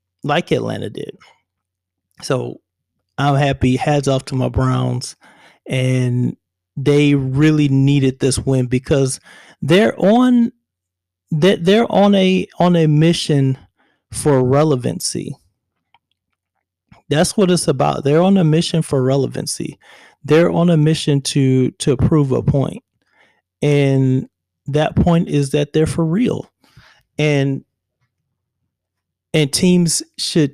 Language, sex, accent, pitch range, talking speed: English, male, American, 125-155 Hz, 120 wpm